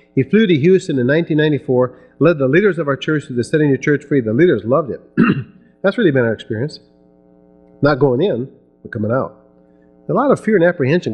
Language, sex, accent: English, male, American